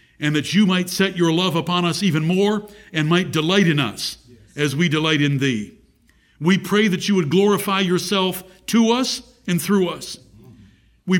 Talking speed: 180 wpm